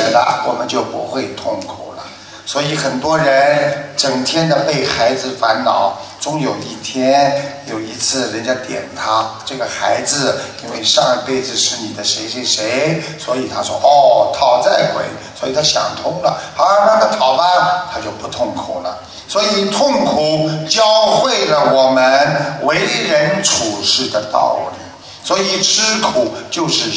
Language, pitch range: Chinese, 140-215 Hz